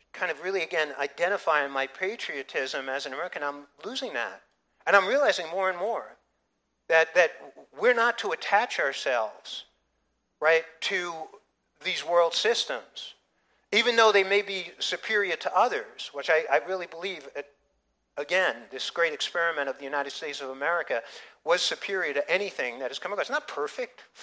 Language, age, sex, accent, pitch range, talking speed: English, 50-69, male, American, 160-255 Hz, 165 wpm